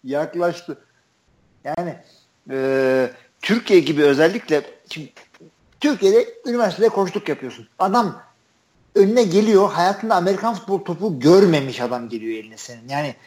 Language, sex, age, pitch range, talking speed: Turkish, male, 50-69, 150-220 Hz, 110 wpm